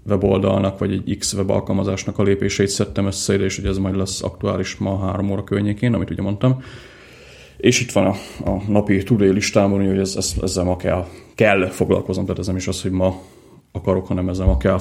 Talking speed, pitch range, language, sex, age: 205 wpm, 95-100 Hz, Hungarian, male, 30-49